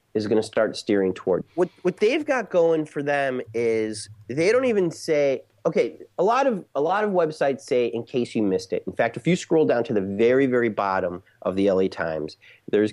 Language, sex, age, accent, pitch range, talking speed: English, male, 30-49, American, 100-145 Hz, 225 wpm